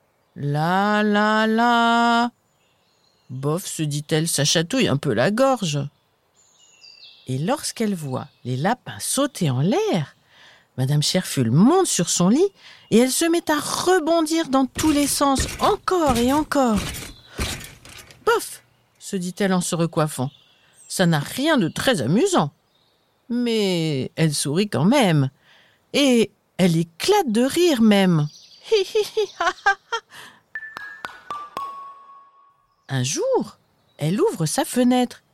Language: French